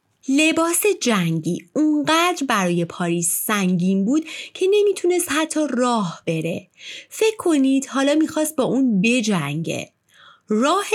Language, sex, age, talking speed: Persian, female, 30-49, 110 wpm